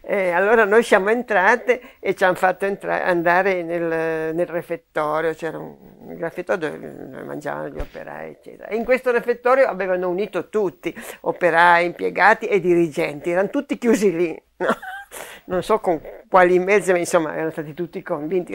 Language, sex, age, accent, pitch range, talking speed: Italian, female, 50-69, native, 160-210 Hz, 160 wpm